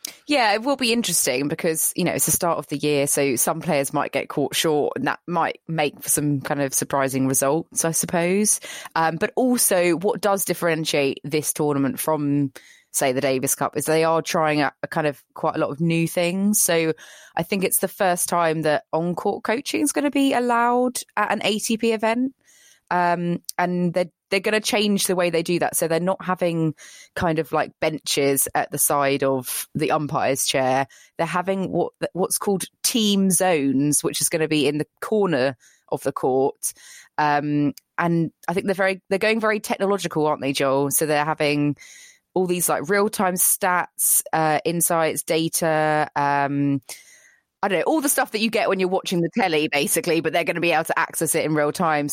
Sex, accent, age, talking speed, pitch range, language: female, British, 20-39, 205 wpm, 150-195 Hz, English